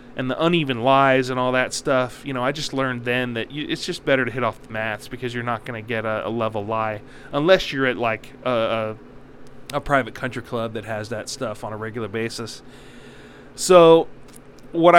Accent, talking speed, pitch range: American, 215 wpm, 125-165 Hz